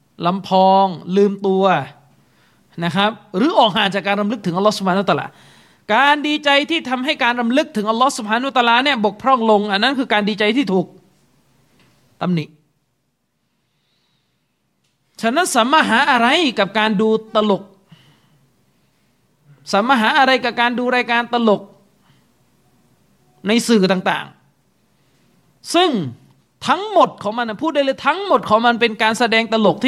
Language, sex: Thai, male